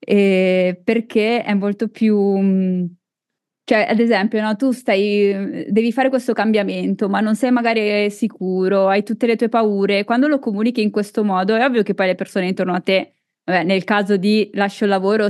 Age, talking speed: 20-39, 185 wpm